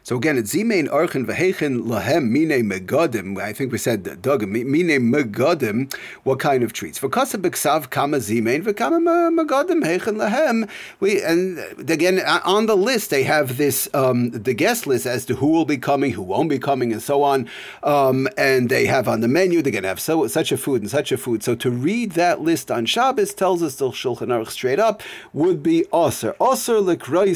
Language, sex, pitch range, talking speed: English, male, 130-205 Hz, 180 wpm